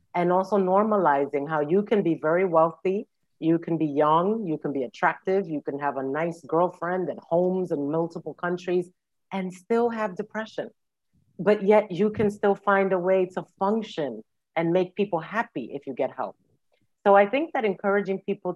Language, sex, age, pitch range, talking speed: English, female, 40-59, 165-210 Hz, 180 wpm